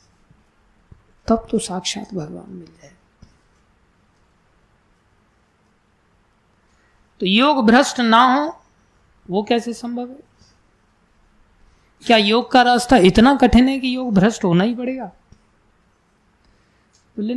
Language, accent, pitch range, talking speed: Hindi, native, 170-240 Hz, 100 wpm